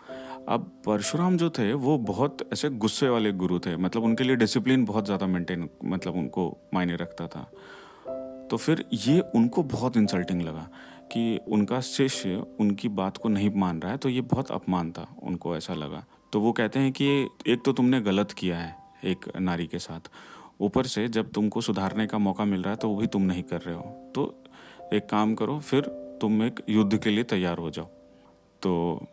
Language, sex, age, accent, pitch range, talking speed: Hindi, male, 40-59, native, 90-125 Hz, 195 wpm